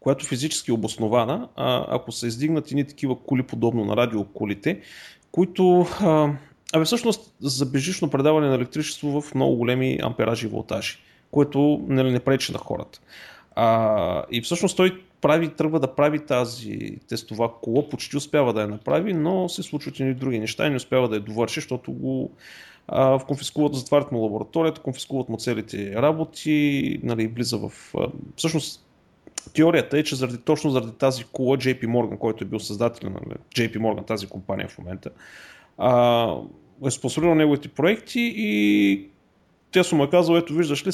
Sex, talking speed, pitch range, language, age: male, 160 wpm, 120-155 Hz, Bulgarian, 30-49